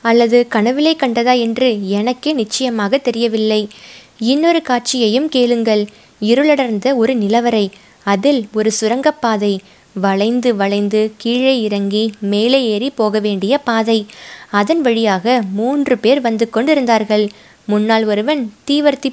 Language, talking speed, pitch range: Tamil, 105 wpm, 210-255 Hz